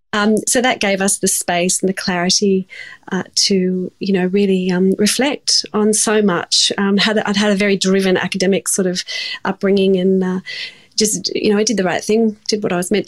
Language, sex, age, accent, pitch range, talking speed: English, female, 30-49, Australian, 190-220 Hz, 205 wpm